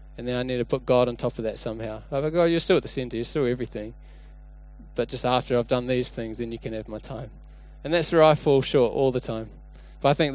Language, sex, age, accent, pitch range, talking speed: English, male, 20-39, Australian, 115-150 Hz, 280 wpm